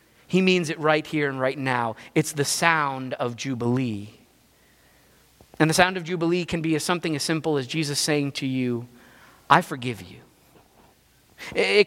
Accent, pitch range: American, 135-180 Hz